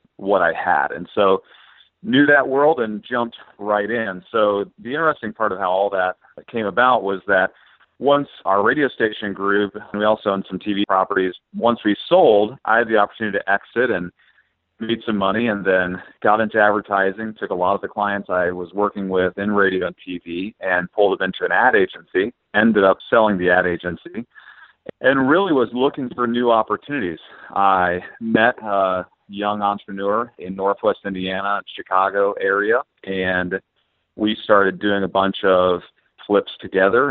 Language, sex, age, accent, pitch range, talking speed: English, male, 40-59, American, 90-105 Hz, 175 wpm